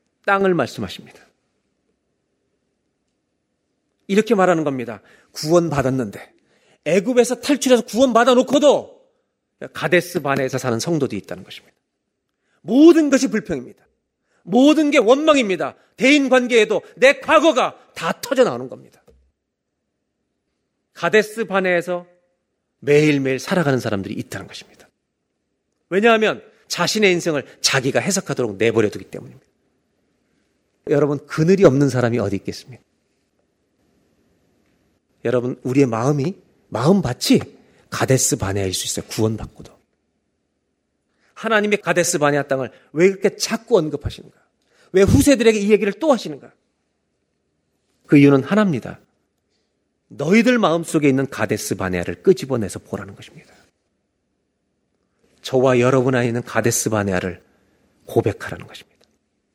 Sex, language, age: male, Korean, 40-59